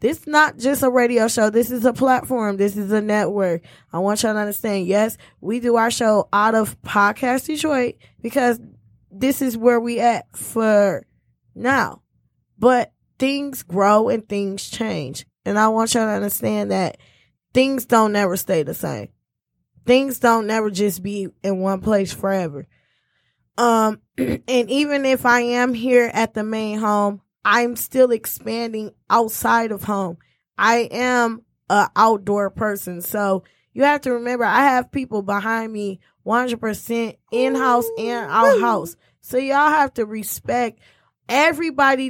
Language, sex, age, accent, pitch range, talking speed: English, female, 10-29, American, 205-250 Hz, 155 wpm